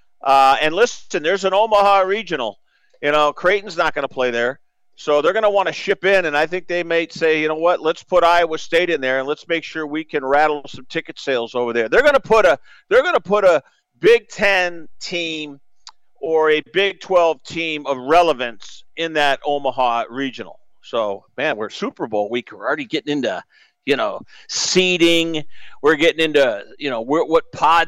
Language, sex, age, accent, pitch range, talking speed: English, male, 50-69, American, 145-175 Hz, 205 wpm